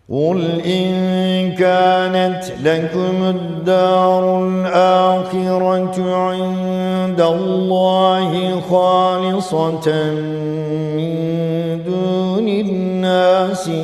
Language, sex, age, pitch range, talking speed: Turkish, male, 50-69, 160-200 Hz, 50 wpm